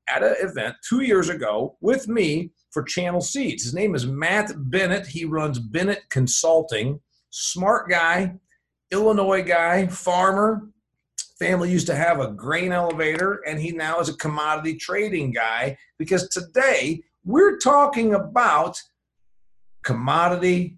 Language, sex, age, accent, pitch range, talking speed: English, male, 50-69, American, 150-200 Hz, 135 wpm